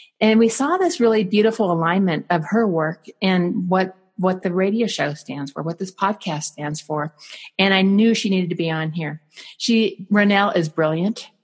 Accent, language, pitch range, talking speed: American, English, 165-205 Hz, 185 wpm